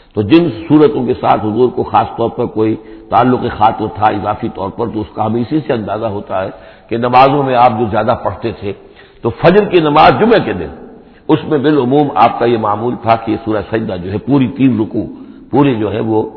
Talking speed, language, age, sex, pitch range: 225 wpm, Urdu, 60-79, male, 115-160 Hz